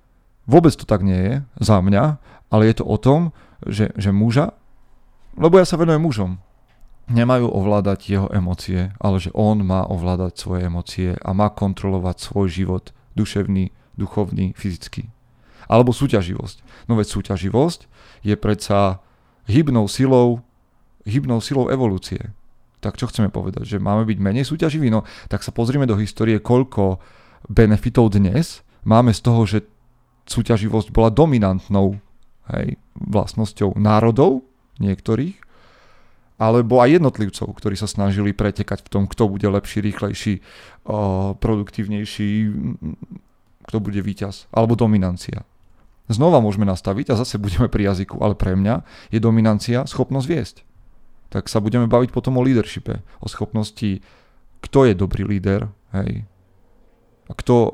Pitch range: 100-120 Hz